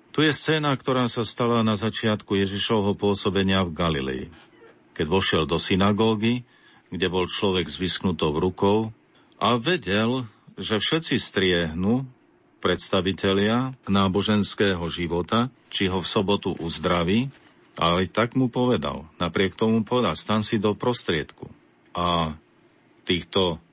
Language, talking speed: Slovak, 120 wpm